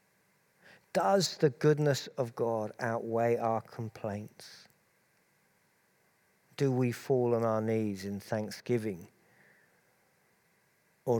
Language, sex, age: English, male, 50-69